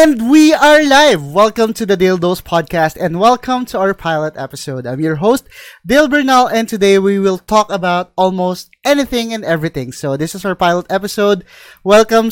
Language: Filipino